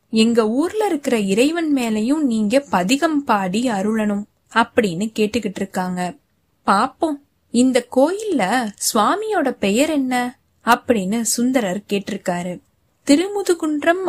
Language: Tamil